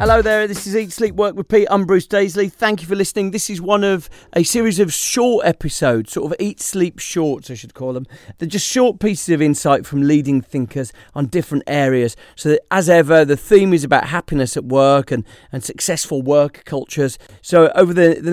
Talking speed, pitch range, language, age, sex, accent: 215 wpm, 130-175 Hz, English, 40-59, male, British